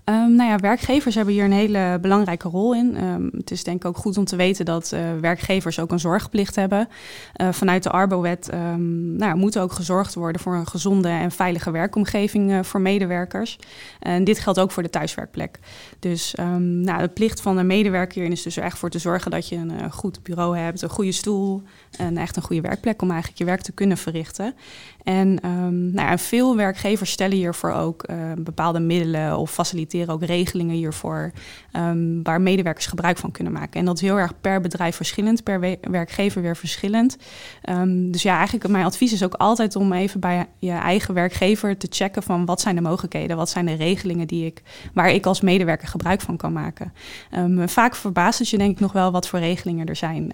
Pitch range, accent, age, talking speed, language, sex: 170-195 Hz, Dutch, 20-39, 215 wpm, Dutch, female